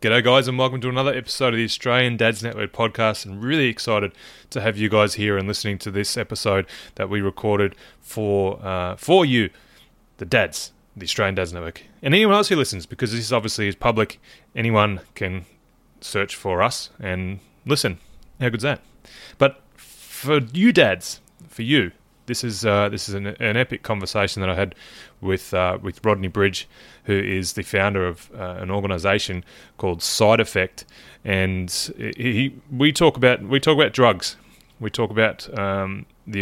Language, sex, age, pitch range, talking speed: English, male, 20-39, 95-115 Hz, 175 wpm